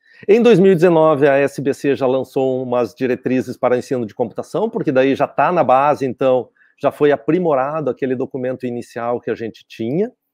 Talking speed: 170 wpm